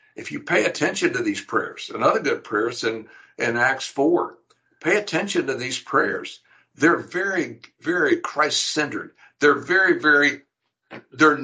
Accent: American